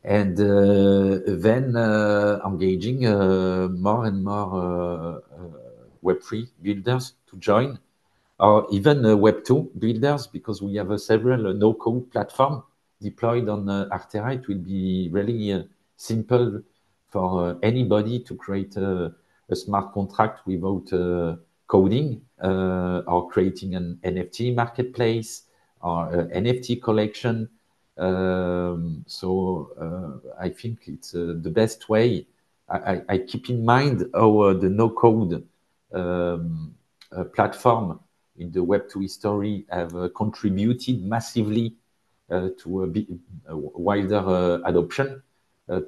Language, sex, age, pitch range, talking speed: English, male, 50-69, 90-115 Hz, 130 wpm